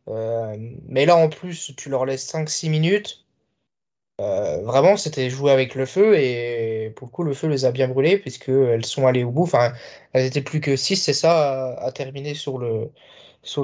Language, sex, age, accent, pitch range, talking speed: French, male, 20-39, French, 130-160 Hz, 195 wpm